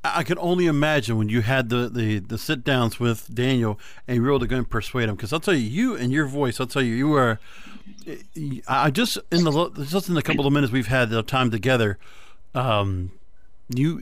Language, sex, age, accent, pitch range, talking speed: English, male, 50-69, American, 120-160 Hz, 225 wpm